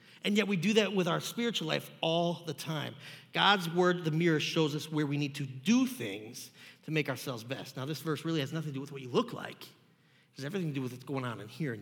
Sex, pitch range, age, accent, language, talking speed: male, 140-175 Hz, 30-49, American, English, 270 wpm